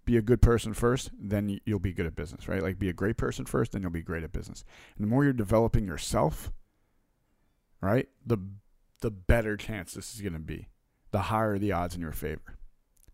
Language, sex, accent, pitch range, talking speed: English, male, American, 95-120 Hz, 215 wpm